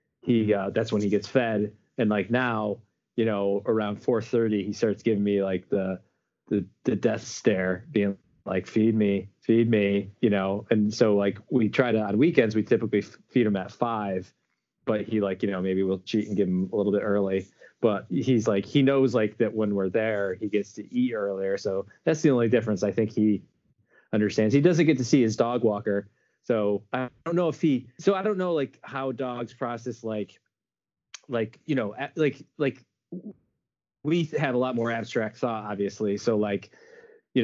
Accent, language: American, English